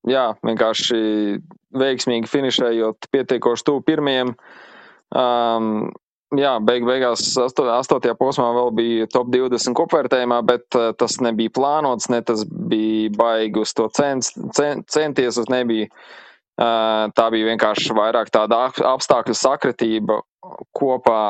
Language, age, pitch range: English, 20-39, 110-130 Hz